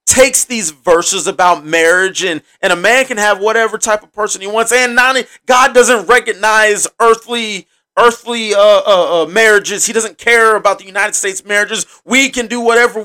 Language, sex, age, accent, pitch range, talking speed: English, male, 30-49, American, 195-245 Hz, 185 wpm